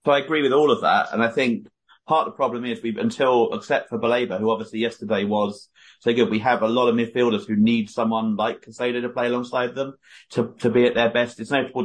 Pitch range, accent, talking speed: 115-130 Hz, British, 250 wpm